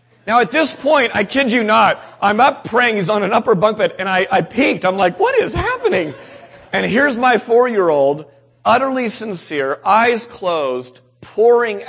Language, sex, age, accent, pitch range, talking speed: English, male, 40-59, American, 140-215 Hz, 175 wpm